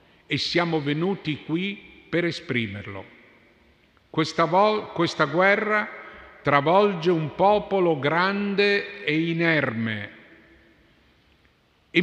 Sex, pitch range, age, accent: male, 140-190 Hz, 50-69, native